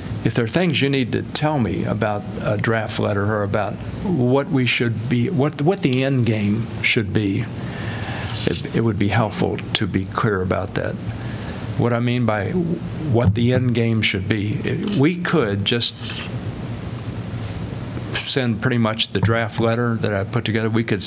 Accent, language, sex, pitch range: American, English, male, 105-120 Hz